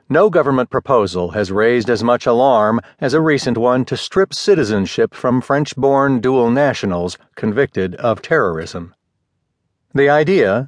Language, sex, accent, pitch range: English, male, American, 110-155 Hz